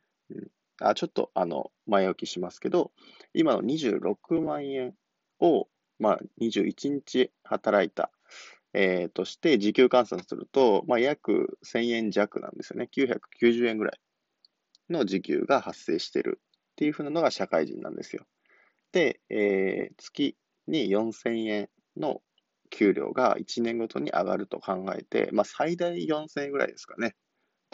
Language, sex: Japanese, male